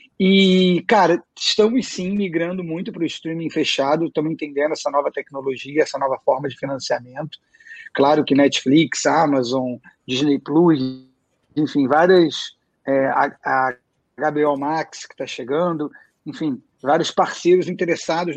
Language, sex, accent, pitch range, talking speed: Portuguese, male, Brazilian, 140-185 Hz, 125 wpm